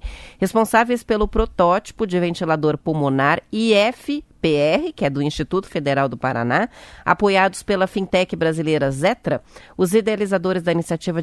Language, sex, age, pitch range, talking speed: Portuguese, female, 30-49, 175-220 Hz, 130 wpm